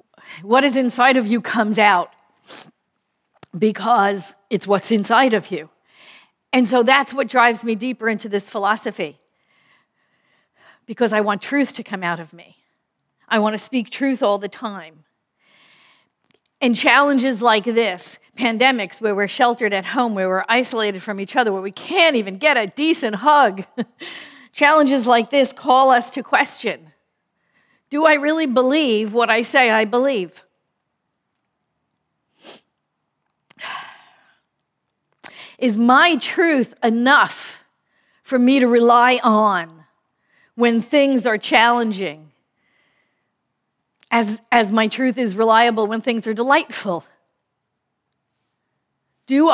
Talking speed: 125 wpm